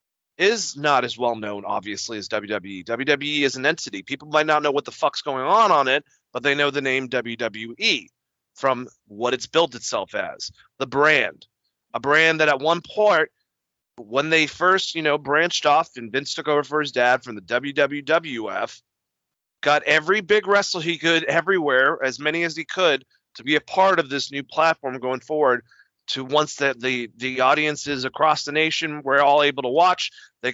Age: 30-49